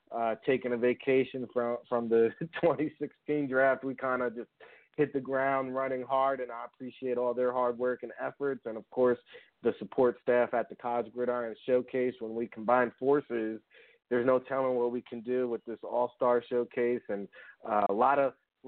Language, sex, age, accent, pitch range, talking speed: English, male, 30-49, American, 120-135 Hz, 195 wpm